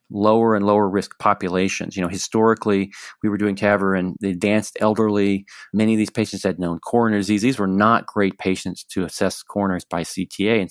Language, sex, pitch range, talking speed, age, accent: English, male, 95-110 Hz, 195 wpm, 40-59, American